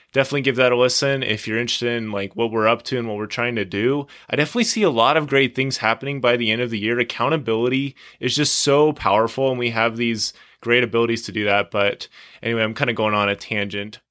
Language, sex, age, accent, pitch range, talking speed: English, male, 20-39, American, 115-140 Hz, 245 wpm